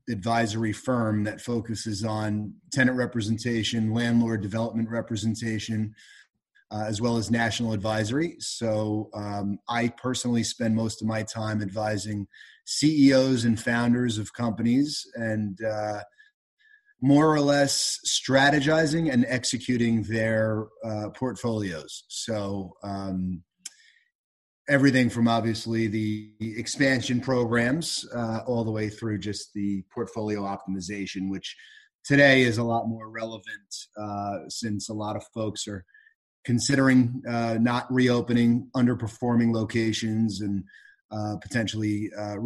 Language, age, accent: English, 30-49, American